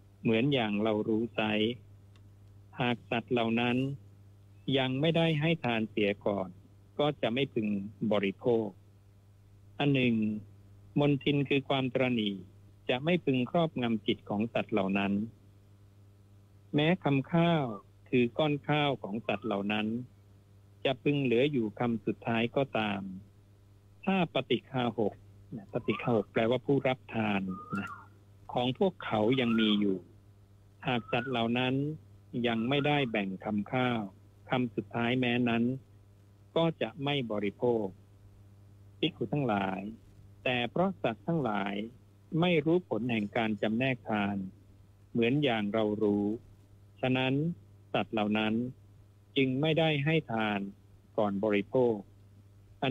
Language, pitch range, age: Thai, 100-130 Hz, 60-79